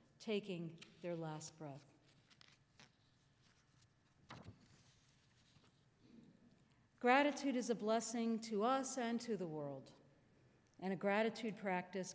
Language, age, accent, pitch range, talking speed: English, 50-69, American, 145-215 Hz, 90 wpm